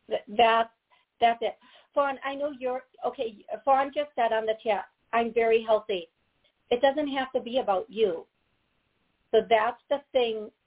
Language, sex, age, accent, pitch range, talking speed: English, female, 50-69, American, 220-265 Hz, 155 wpm